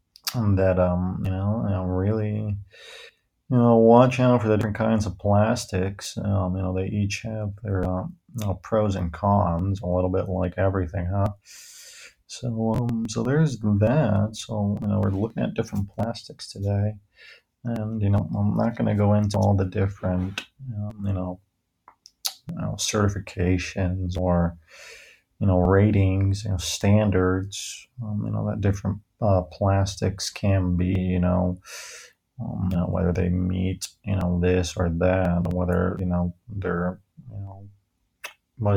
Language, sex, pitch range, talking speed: English, male, 95-105 Hz, 165 wpm